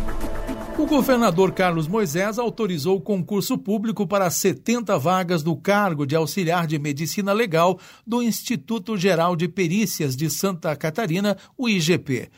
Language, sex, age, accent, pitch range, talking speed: Portuguese, male, 60-79, Brazilian, 160-205 Hz, 135 wpm